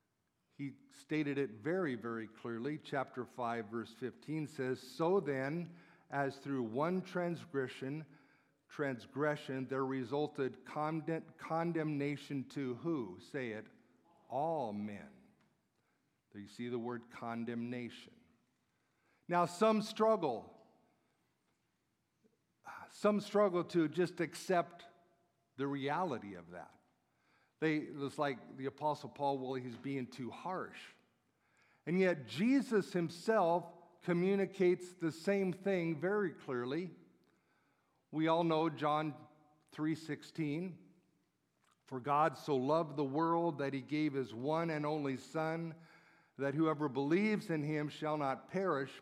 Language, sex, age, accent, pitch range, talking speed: English, male, 50-69, American, 130-165 Hz, 115 wpm